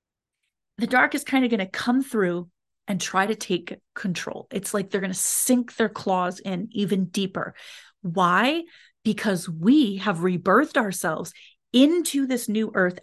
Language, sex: English, female